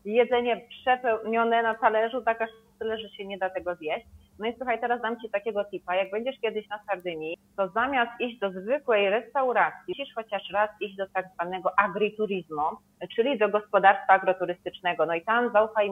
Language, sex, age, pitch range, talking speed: Polish, female, 30-49, 190-240 Hz, 180 wpm